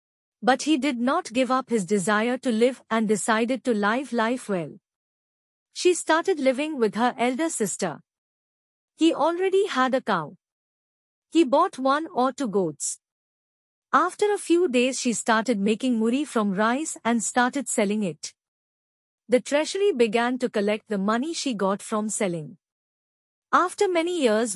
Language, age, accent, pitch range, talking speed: Hindi, 50-69, native, 220-290 Hz, 150 wpm